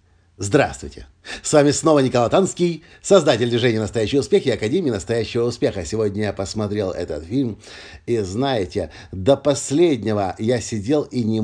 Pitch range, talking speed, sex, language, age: 100-130 Hz, 140 wpm, male, Russian, 50-69